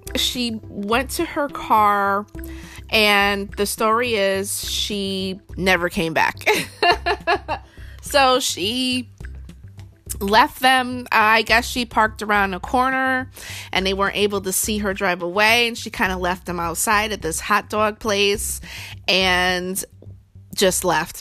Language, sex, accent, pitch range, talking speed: English, female, American, 175-225 Hz, 135 wpm